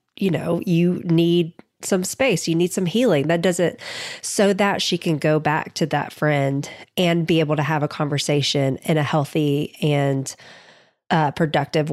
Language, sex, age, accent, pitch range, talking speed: English, female, 30-49, American, 145-170 Hz, 175 wpm